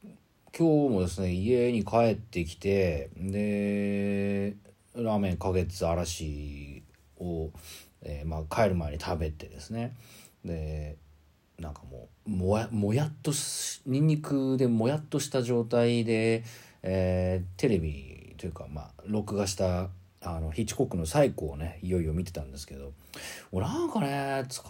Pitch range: 80-120 Hz